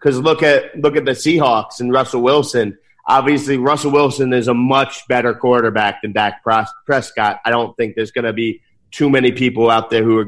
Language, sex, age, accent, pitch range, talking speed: English, male, 30-49, American, 120-145 Hz, 205 wpm